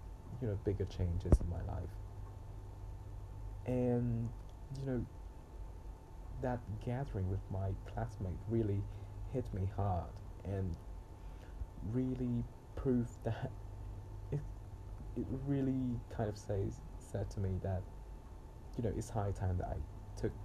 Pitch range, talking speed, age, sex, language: 95-110 Hz, 115 wpm, 20-39, male, Vietnamese